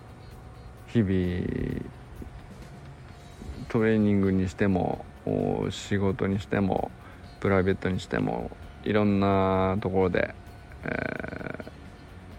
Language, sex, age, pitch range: Japanese, male, 50-69, 95-125 Hz